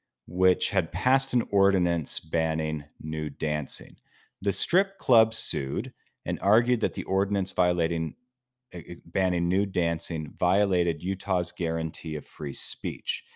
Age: 40-59